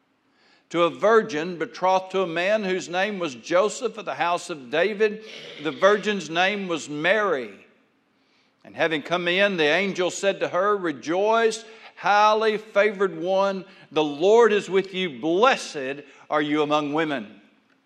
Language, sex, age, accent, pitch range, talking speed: English, male, 60-79, American, 185-255 Hz, 150 wpm